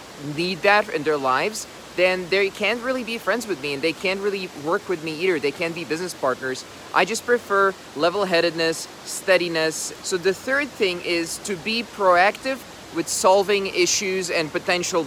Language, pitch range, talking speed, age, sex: English, 160-195 Hz, 175 wpm, 30-49, male